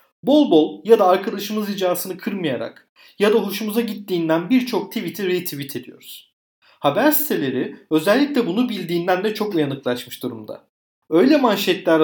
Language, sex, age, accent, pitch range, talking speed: Turkish, male, 40-59, native, 155-235 Hz, 130 wpm